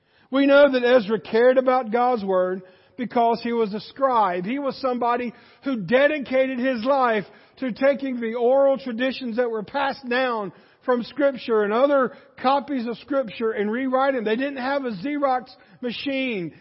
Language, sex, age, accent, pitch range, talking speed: English, male, 50-69, American, 225-270 Hz, 160 wpm